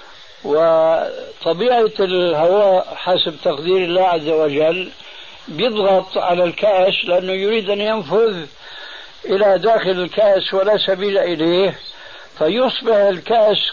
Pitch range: 180-220 Hz